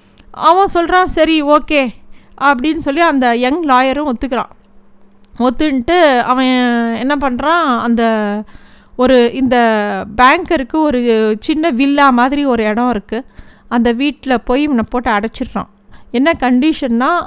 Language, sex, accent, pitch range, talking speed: Tamil, female, native, 230-285 Hz, 115 wpm